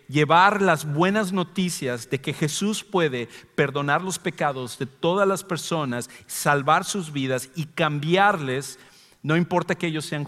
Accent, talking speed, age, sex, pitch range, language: Mexican, 145 wpm, 50-69, male, 130-170 Hz, English